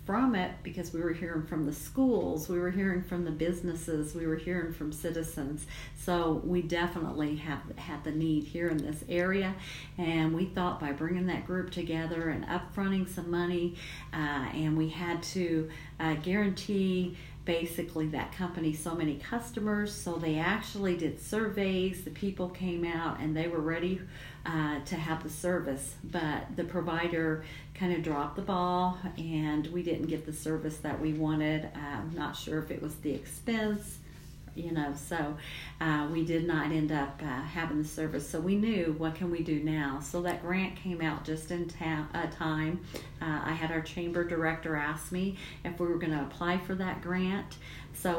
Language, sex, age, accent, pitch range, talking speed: English, female, 50-69, American, 155-175 Hz, 185 wpm